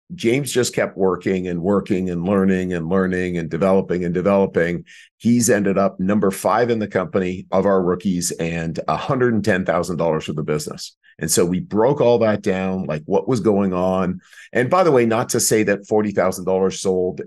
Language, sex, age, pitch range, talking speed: English, male, 50-69, 90-110 Hz, 180 wpm